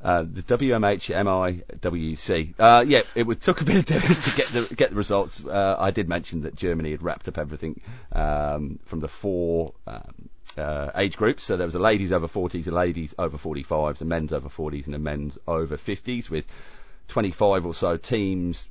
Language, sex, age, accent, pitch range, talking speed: English, male, 40-59, British, 75-95 Hz, 195 wpm